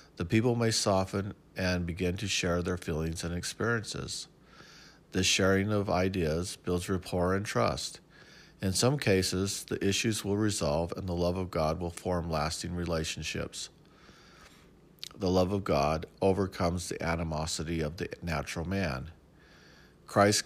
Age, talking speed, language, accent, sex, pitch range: 50-69, 140 wpm, English, American, male, 85-100 Hz